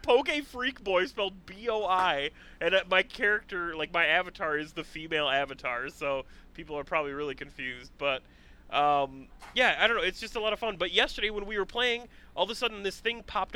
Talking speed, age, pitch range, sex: 205 wpm, 30-49, 155-230 Hz, male